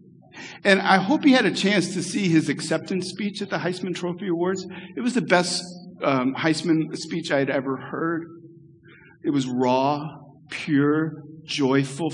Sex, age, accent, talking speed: male, 50-69, American, 165 wpm